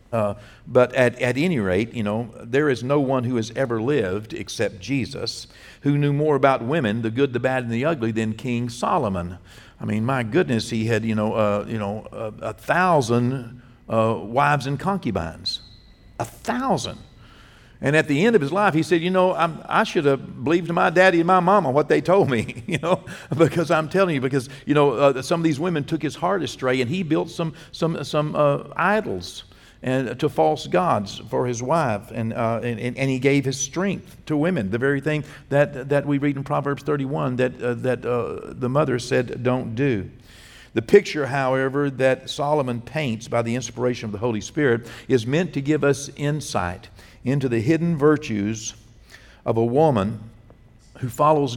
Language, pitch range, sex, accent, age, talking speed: English, 115-150 Hz, male, American, 60-79, 195 wpm